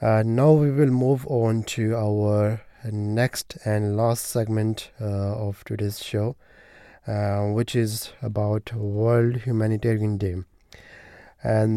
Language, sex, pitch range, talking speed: English, male, 105-120 Hz, 120 wpm